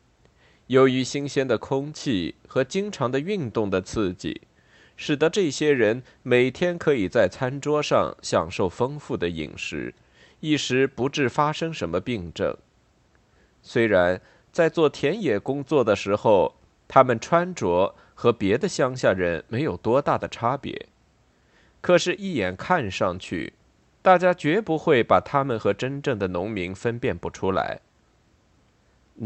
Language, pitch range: Chinese, 105-150 Hz